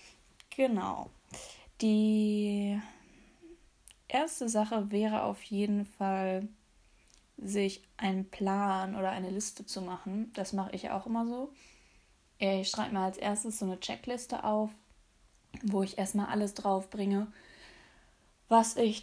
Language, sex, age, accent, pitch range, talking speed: German, female, 20-39, German, 190-215 Hz, 120 wpm